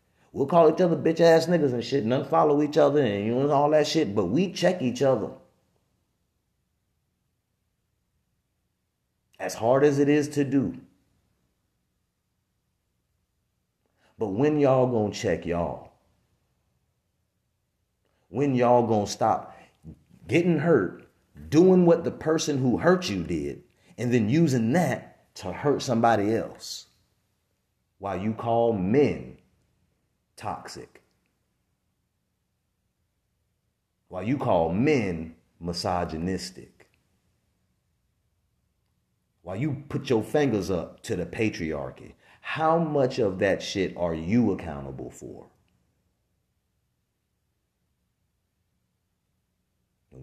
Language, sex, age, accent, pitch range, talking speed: English, male, 30-49, American, 90-145 Hz, 105 wpm